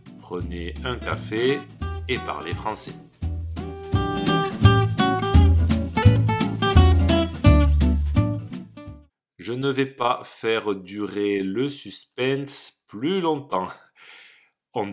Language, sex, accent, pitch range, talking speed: French, male, French, 95-140 Hz, 70 wpm